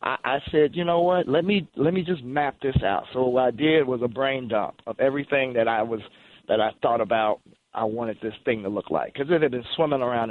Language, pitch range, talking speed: English, 110-140 Hz, 250 wpm